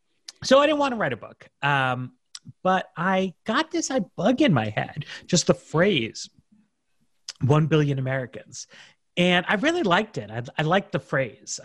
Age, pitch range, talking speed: 30-49, 130-190 Hz, 170 wpm